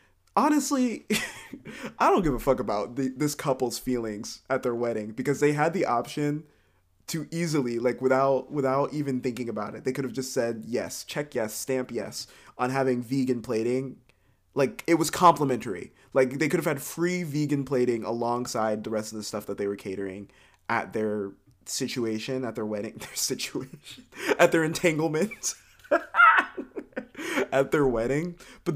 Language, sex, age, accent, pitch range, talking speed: English, male, 20-39, American, 115-170 Hz, 165 wpm